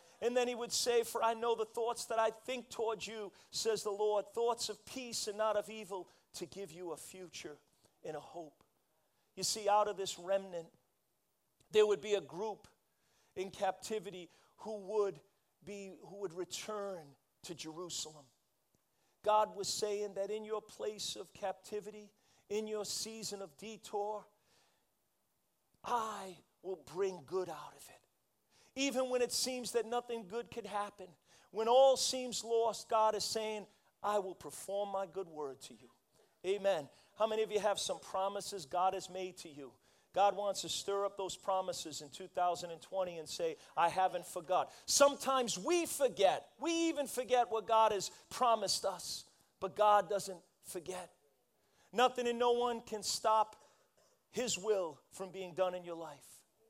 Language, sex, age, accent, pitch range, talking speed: English, male, 40-59, American, 185-225 Hz, 160 wpm